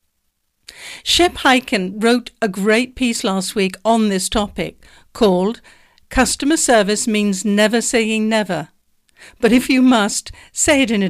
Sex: female